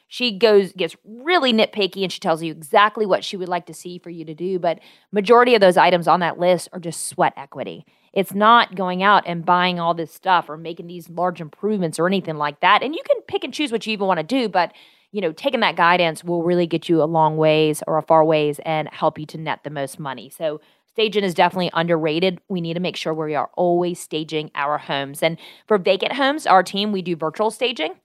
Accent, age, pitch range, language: American, 30-49, 160-200 Hz, English